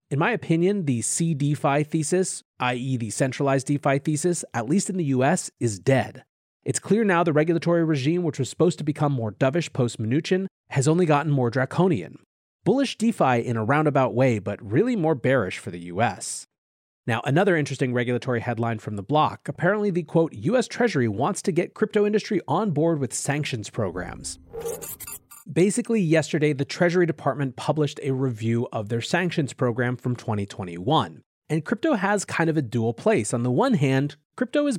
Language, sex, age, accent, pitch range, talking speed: English, male, 30-49, American, 130-175 Hz, 175 wpm